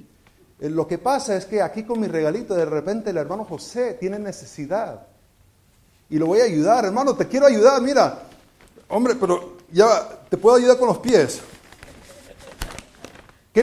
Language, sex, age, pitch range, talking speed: Spanish, male, 50-69, 145-230 Hz, 160 wpm